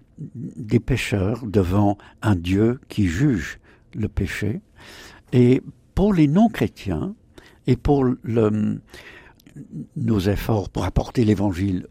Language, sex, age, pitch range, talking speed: French, male, 60-79, 105-140 Hz, 105 wpm